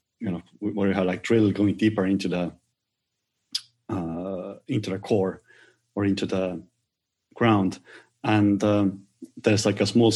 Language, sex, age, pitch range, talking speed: English, male, 30-49, 95-110 Hz, 150 wpm